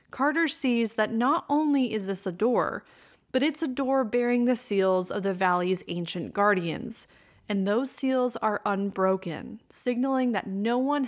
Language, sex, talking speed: English, female, 160 wpm